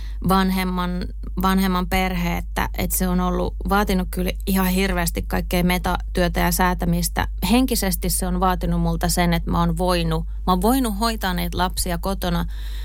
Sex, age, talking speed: female, 20-39, 145 wpm